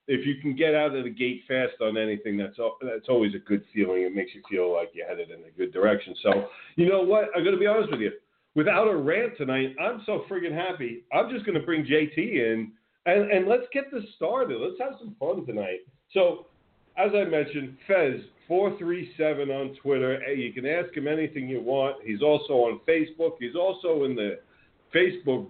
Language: English